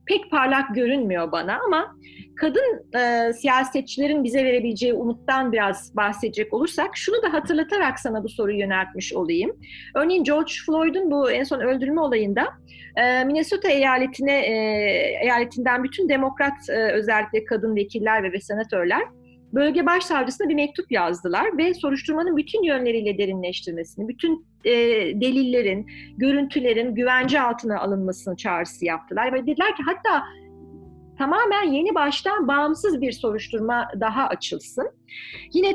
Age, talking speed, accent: 40-59, 125 wpm, native